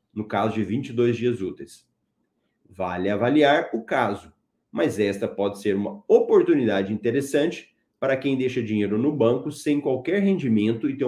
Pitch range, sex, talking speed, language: 110-150 Hz, male, 150 wpm, Portuguese